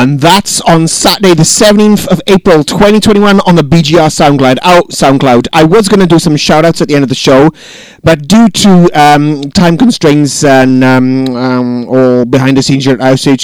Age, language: 30-49, English